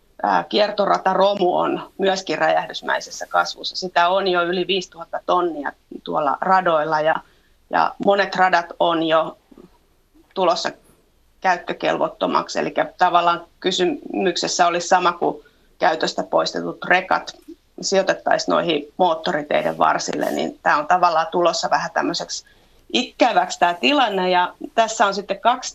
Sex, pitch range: female, 170-200 Hz